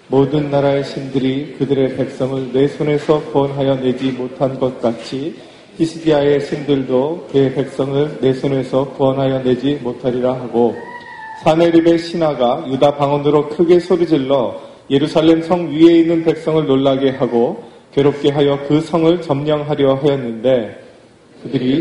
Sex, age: male, 30-49